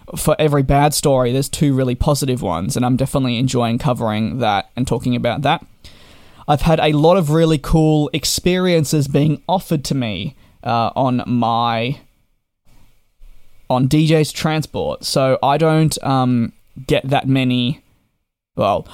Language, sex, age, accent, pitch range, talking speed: English, male, 20-39, Australian, 125-150 Hz, 145 wpm